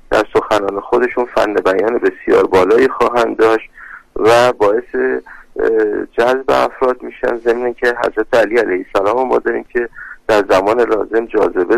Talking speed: 130 wpm